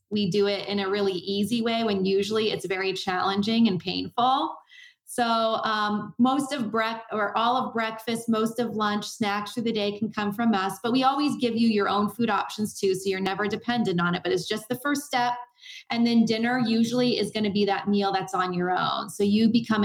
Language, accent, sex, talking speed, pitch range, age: English, American, female, 220 wpm, 195-230 Hz, 20-39